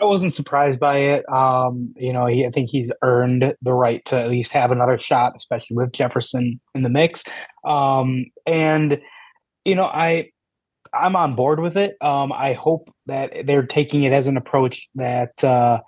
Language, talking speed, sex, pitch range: English, 180 wpm, male, 120-145 Hz